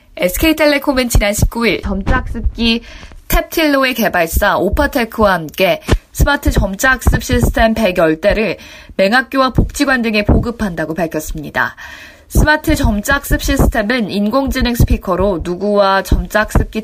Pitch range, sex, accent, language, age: 195-260 Hz, female, native, Korean, 20-39